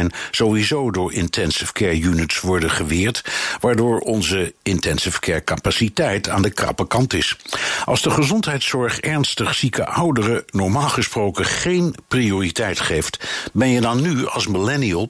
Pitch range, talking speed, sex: 90-125 Hz, 140 wpm, male